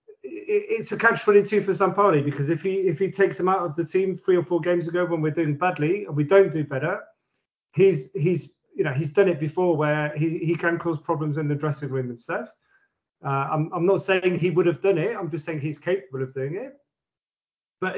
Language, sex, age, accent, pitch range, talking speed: English, male, 30-49, British, 150-190 Hz, 230 wpm